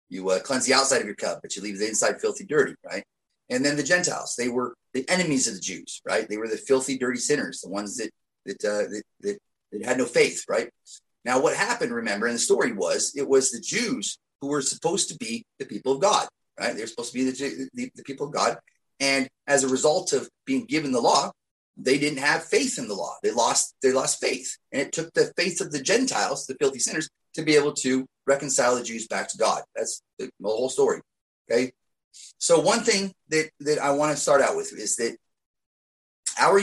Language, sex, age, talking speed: English, male, 30-49, 230 wpm